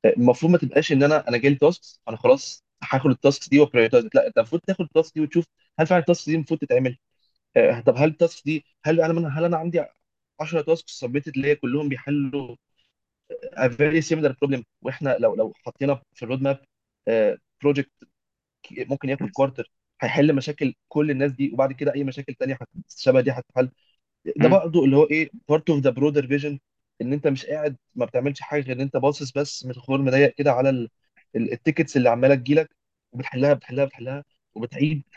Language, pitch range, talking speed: Arabic, 135-160 Hz, 180 wpm